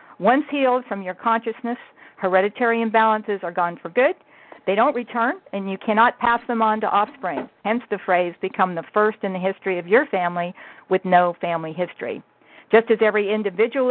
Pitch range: 185-230 Hz